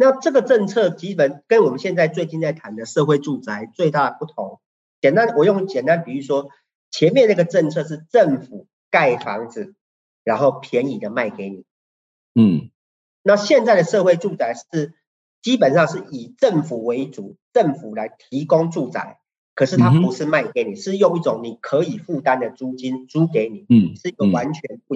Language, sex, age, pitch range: Chinese, male, 40-59, 135-200 Hz